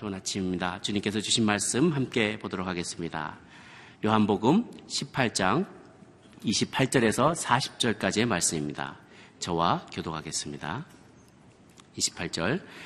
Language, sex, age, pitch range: Korean, male, 40-59, 85-110 Hz